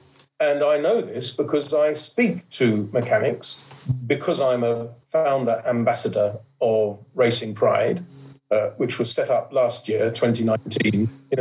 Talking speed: 135 wpm